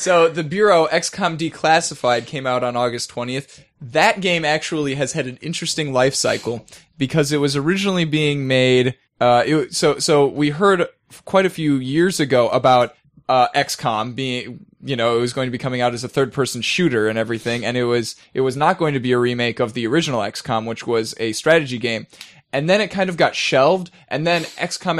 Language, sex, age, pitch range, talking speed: English, male, 10-29, 125-160 Hz, 205 wpm